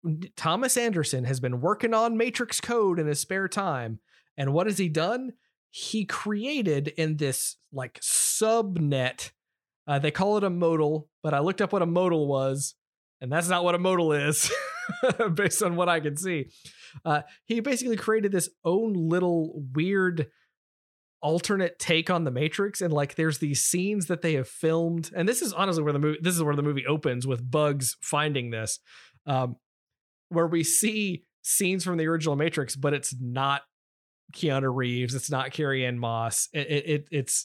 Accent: American